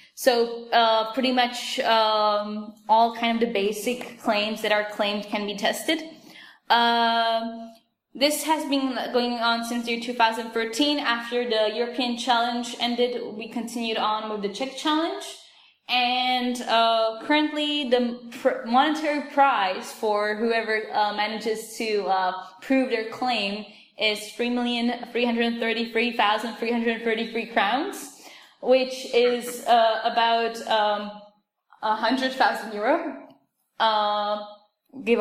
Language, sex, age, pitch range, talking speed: English, female, 10-29, 225-260 Hz, 120 wpm